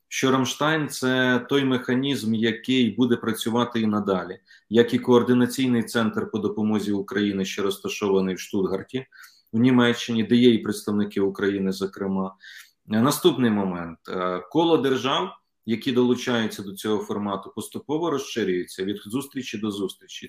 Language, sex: Ukrainian, male